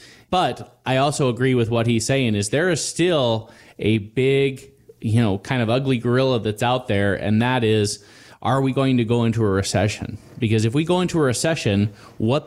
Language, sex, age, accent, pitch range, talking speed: English, male, 30-49, American, 100-120 Hz, 200 wpm